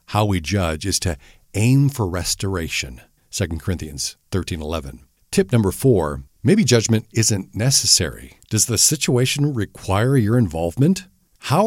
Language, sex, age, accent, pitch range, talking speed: English, male, 50-69, American, 90-115 Hz, 130 wpm